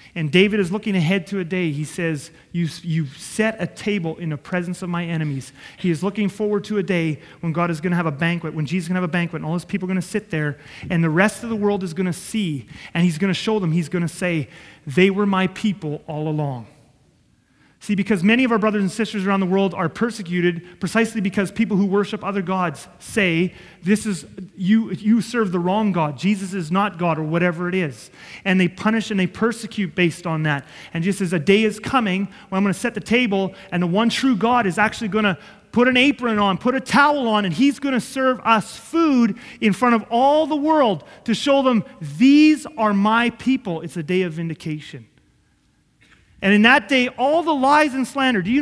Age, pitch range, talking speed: 30-49, 170-220 Hz, 235 wpm